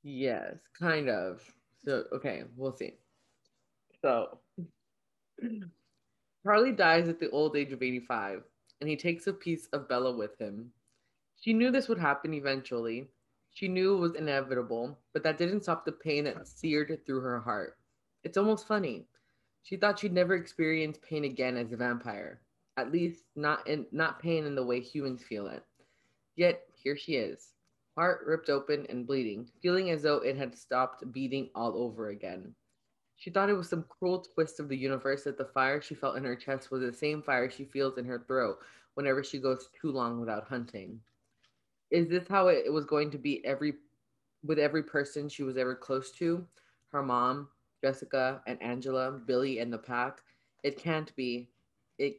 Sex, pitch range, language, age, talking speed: female, 125-160 Hz, English, 20-39, 180 wpm